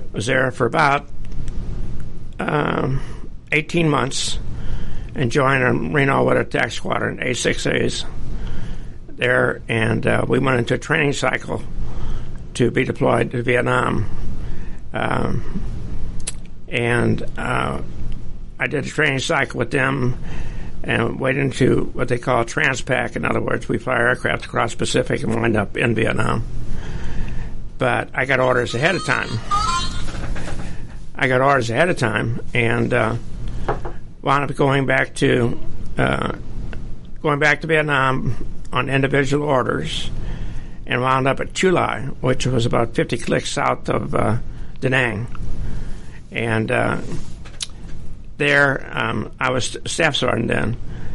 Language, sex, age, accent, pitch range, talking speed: English, male, 60-79, American, 115-135 Hz, 135 wpm